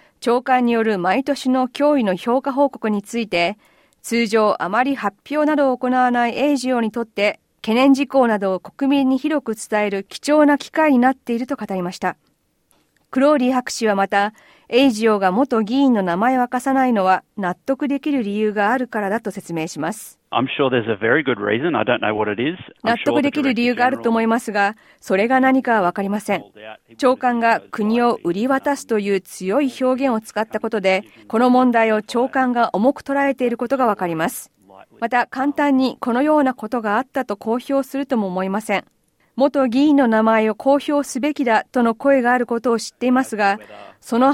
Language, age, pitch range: Japanese, 40-59, 210-265 Hz